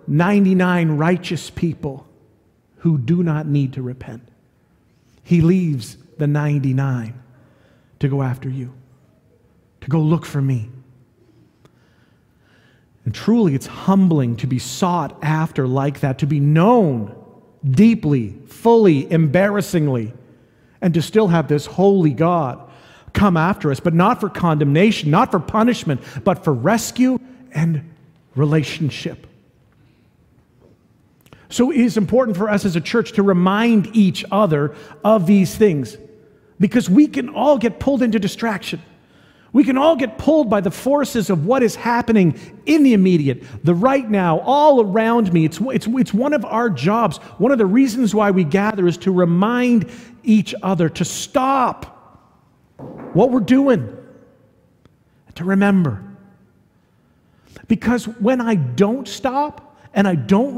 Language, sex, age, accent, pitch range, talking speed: English, male, 40-59, American, 145-225 Hz, 140 wpm